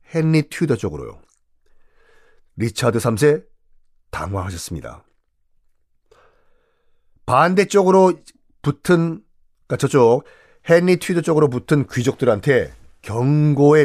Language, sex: Korean, male